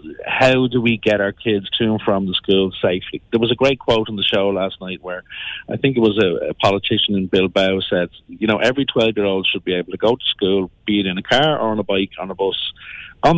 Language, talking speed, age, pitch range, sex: English, 255 wpm, 40-59, 95-115 Hz, male